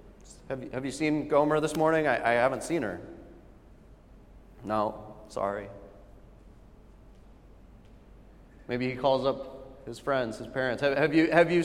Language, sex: English, male